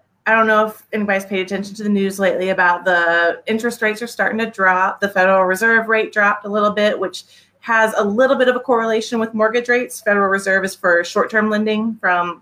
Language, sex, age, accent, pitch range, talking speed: English, female, 30-49, American, 180-225 Hz, 220 wpm